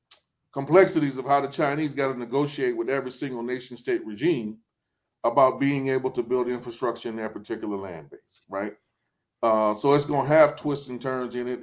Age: 30-49